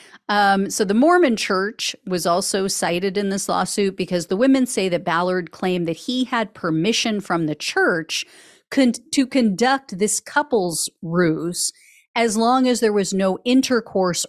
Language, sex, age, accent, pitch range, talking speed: English, female, 40-59, American, 170-235 Hz, 155 wpm